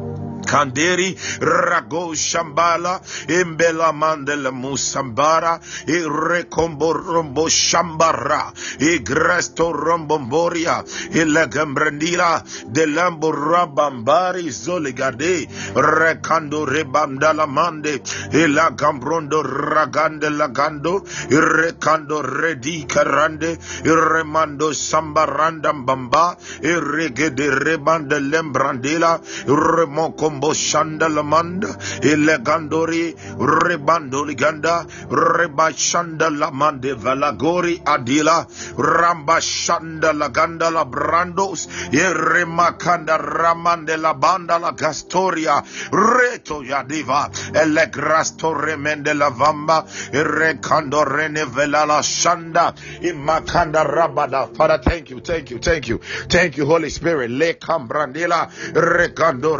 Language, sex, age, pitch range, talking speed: English, male, 50-69, 150-165 Hz, 80 wpm